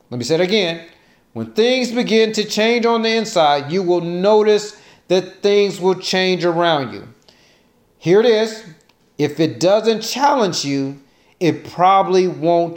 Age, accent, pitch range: 40-59, American, 160-225 Hz